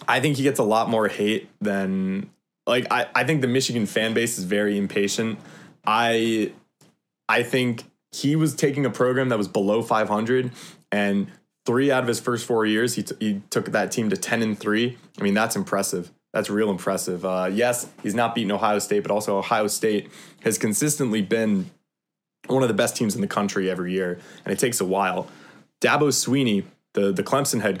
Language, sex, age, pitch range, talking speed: English, male, 20-39, 100-120 Hz, 200 wpm